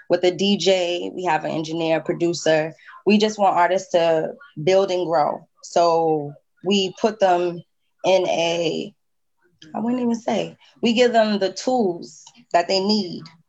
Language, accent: English, American